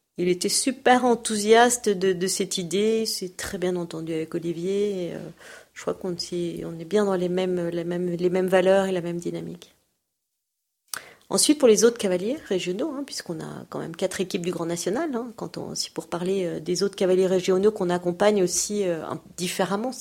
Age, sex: 40-59, female